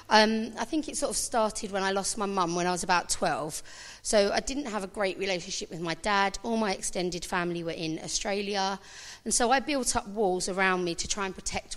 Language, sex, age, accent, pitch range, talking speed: English, female, 40-59, British, 180-215 Hz, 235 wpm